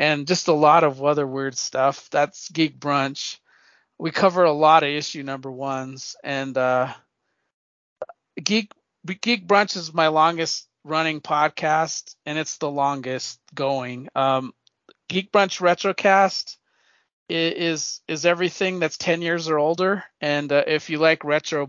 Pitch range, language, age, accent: 140-165 Hz, English, 40-59, American